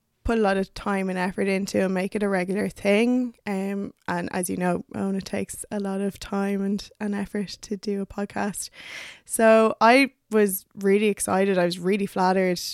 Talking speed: 200 wpm